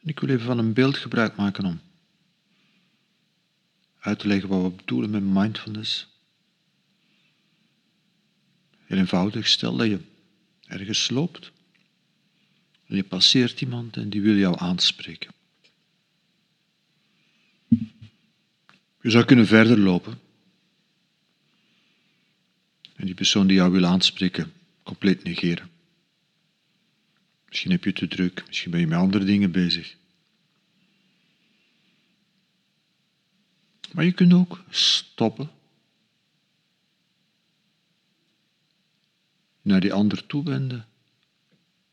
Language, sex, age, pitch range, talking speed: Dutch, male, 50-69, 120-195 Hz, 95 wpm